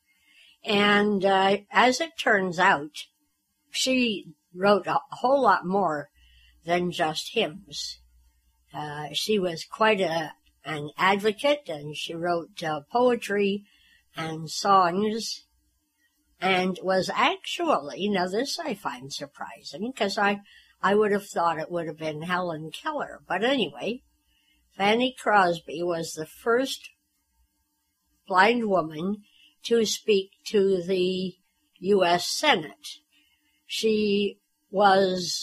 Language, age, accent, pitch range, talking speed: English, 60-79, American, 165-235 Hz, 110 wpm